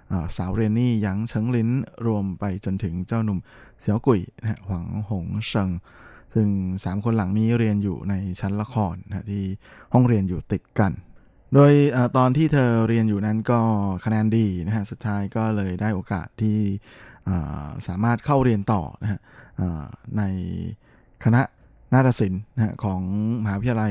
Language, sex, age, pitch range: Thai, male, 20-39, 95-115 Hz